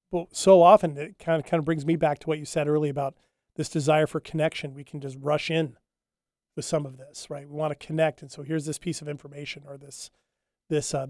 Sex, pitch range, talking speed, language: male, 140-165 Hz, 250 wpm, English